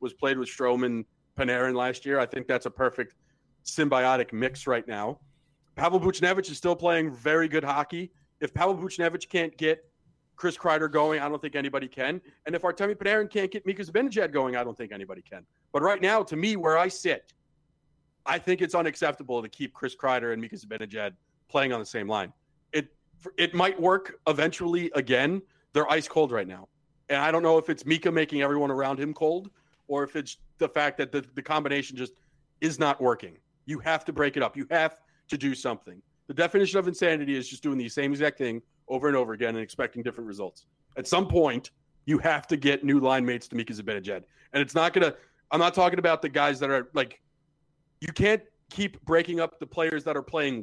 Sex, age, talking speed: male, 40-59, 210 wpm